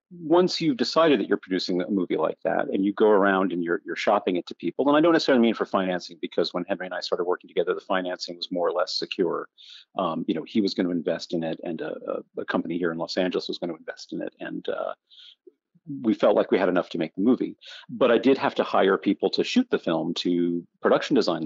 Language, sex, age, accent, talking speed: English, male, 40-59, American, 260 wpm